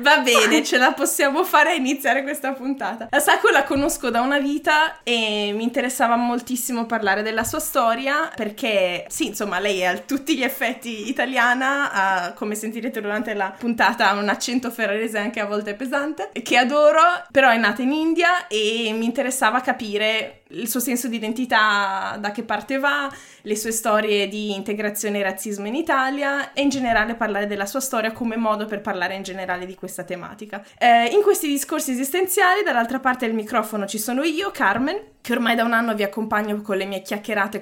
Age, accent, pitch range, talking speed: 20-39, native, 205-265 Hz, 190 wpm